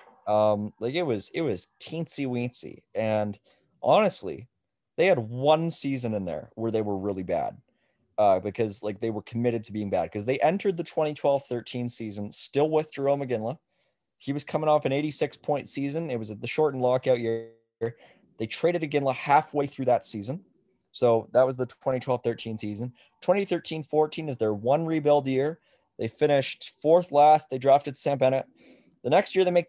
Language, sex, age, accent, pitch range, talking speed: English, male, 20-39, American, 115-150 Hz, 180 wpm